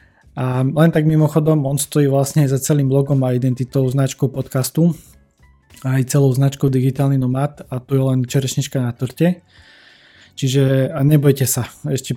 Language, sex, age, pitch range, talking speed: Slovak, male, 20-39, 125-140 Hz, 160 wpm